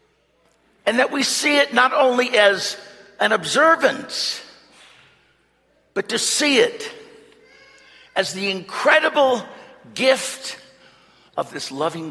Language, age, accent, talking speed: English, 60-79, American, 105 wpm